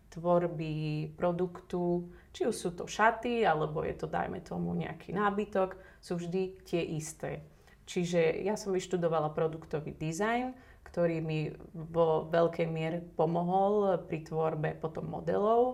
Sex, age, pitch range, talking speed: female, 30-49, 160-180 Hz, 130 wpm